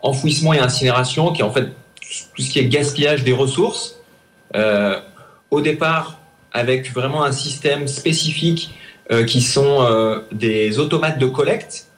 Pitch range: 120-155 Hz